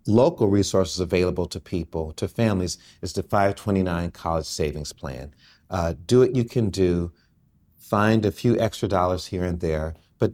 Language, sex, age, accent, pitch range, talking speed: English, male, 40-59, American, 90-100 Hz, 165 wpm